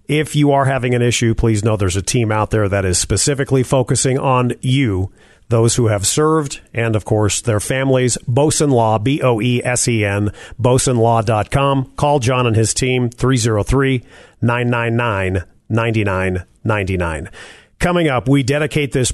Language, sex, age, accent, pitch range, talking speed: English, male, 40-59, American, 110-140 Hz, 135 wpm